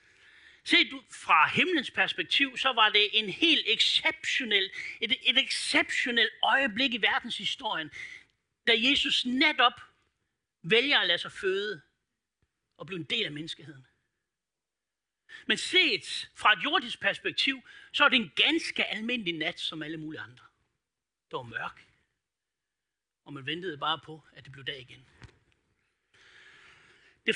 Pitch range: 200-320 Hz